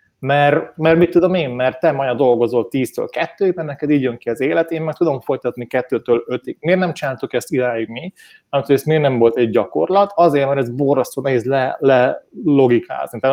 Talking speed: 200 wpm